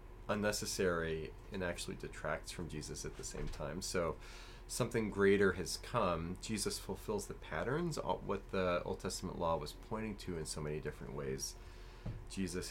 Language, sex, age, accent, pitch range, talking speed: English, male, 30-49, American, 85-110 Hz, 160 wpm